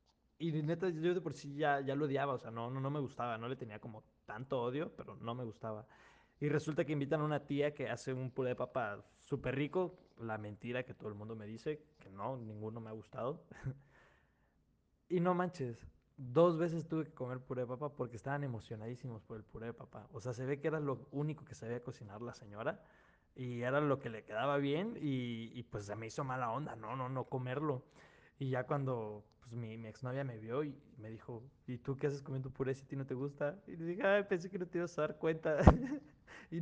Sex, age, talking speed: male, 20-39, 235 wpm